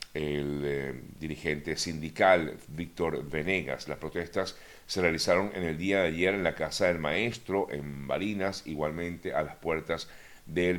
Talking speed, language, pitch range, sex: 150 wpm, Spanish, 75-90 Hz, male